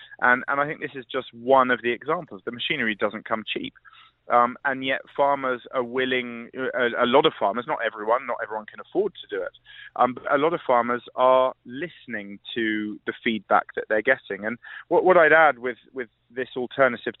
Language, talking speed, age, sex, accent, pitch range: English, 200 wpm, 30-49, male, British, 110-140 Hz